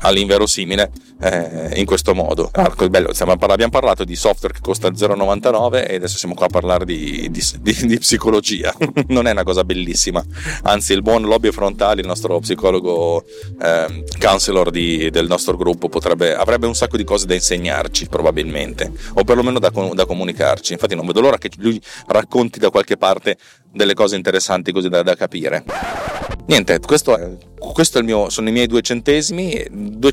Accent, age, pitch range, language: native, 30-49, 85-115 Hz, Italian